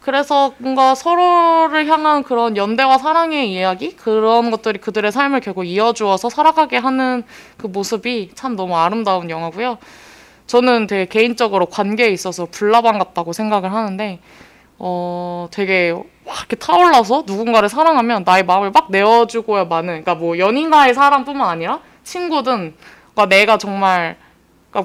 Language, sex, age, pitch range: Korean, female, 20-39, 185-260 Hz